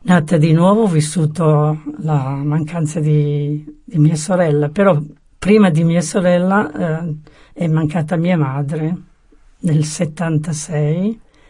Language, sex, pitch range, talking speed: Italian, female, 150-180 Hz, 120 wpm